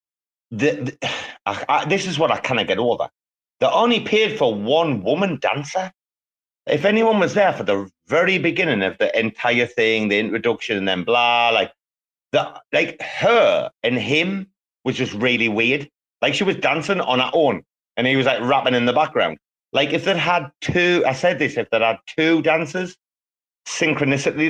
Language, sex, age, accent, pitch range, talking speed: English, male, 30-49, British, 110-155 Hz, 185 wpm